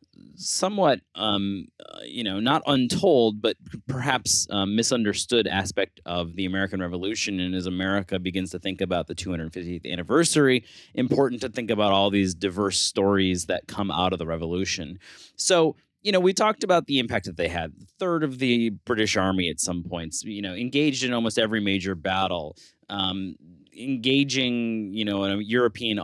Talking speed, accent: 170 wpm, American